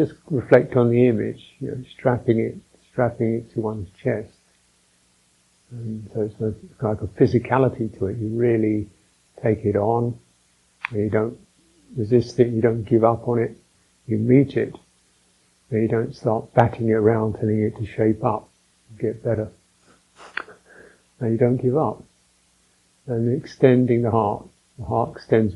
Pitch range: 105-125 Hz